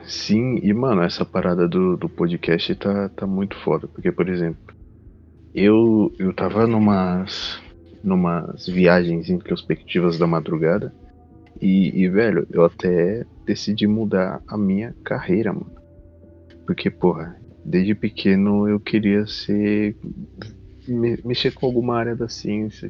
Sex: male